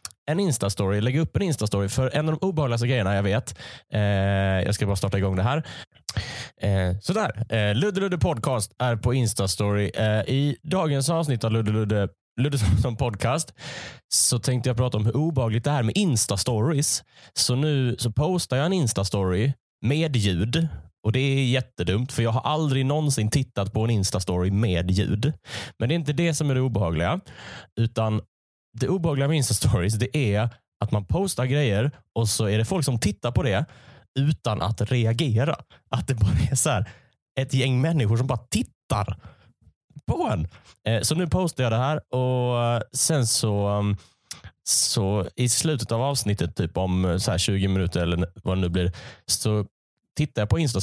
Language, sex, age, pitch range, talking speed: Swedish, male, 20-39, 100-135 Hz, 175 wpm